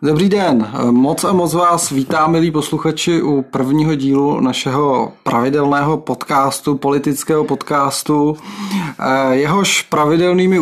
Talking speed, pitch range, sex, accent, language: 105 wpm, 135-160 Hz, male, native, Czech